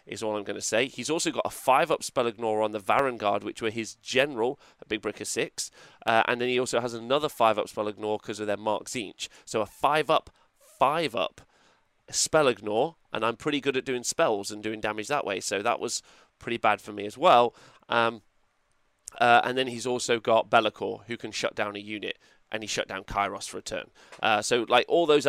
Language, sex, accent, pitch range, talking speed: English, male, British, 110-130 Hz, 230 wpm